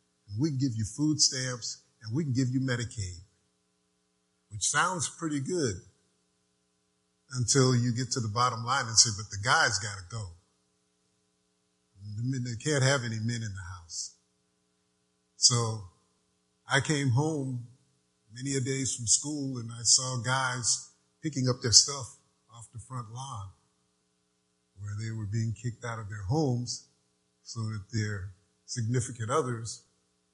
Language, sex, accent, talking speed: English, male, American, 145 wpm